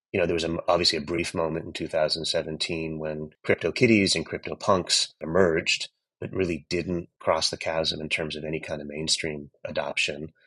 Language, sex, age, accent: English, male, 30-49, American